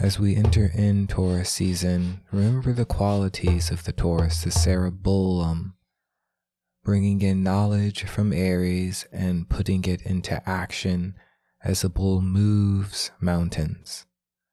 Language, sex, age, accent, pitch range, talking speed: English, male, 20-39, American, 85-100 Hz, 120 wpm